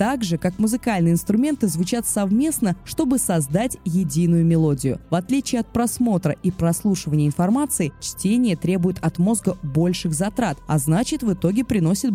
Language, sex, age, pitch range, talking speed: Russian, female, 20-39, 170-235 Hz, 145 wpm